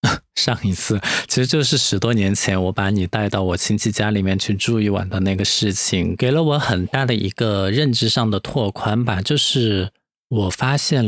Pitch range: 95-115 Hz